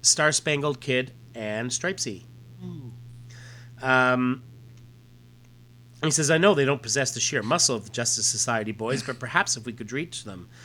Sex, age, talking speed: male, 30-49, 150 wpm